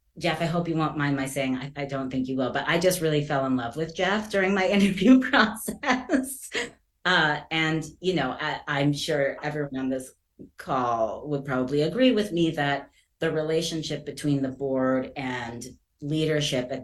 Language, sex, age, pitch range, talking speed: English, female, 30-49, 130-155 Hz, 180 wpm